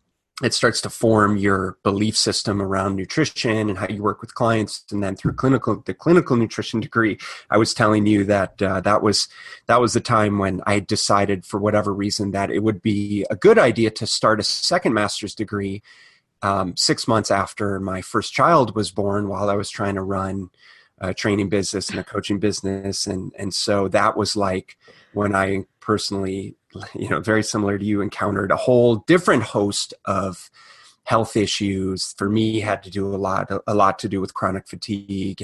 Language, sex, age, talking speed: English, male, 30-49, 190 wpm